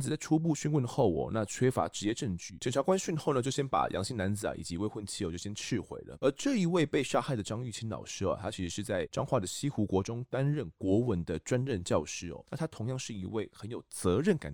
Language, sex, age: Chinese, male, 20-39